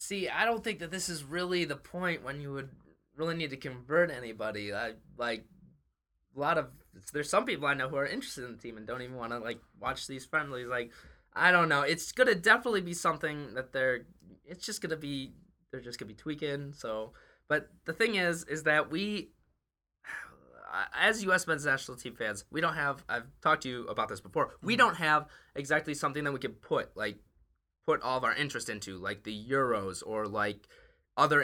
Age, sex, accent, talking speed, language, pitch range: 20-39, male, American, 205 wpm, English, 120-165 Hz